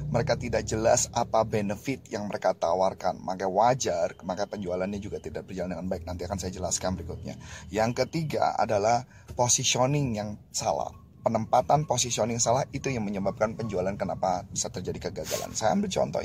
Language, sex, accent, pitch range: Indonesian, male, native, 100-125 Hz